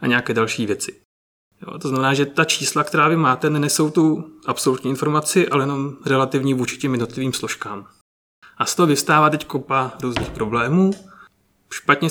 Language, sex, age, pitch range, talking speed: Czech, male, 30-49, 120-145 Hz, 165 wpm